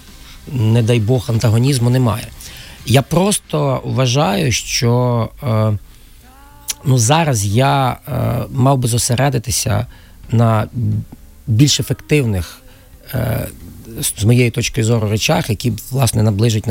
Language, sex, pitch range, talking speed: Ukrainian, male, 105-130 Hz, 105 wpm